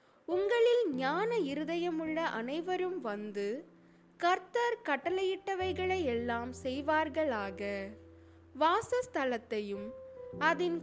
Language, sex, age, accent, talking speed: Tamil, female, 20-39, native, 55 wpm